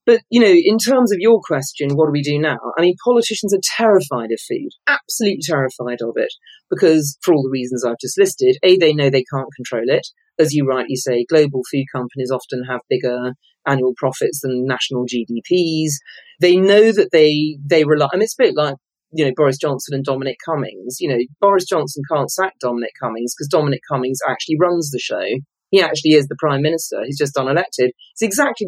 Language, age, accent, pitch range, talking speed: English, 40-59, British, 140-220 Hz, 205 wpm